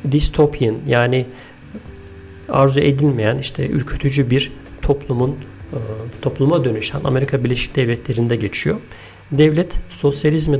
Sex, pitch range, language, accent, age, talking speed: male, 120-145 Hz, Turkish, native, 50-69, 90 wpm